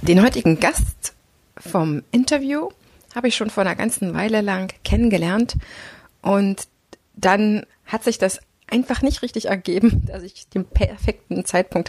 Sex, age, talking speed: female, 30-49, 140 wpm